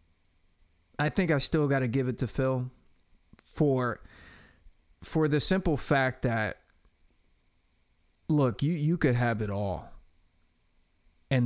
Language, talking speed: English, 125 wpm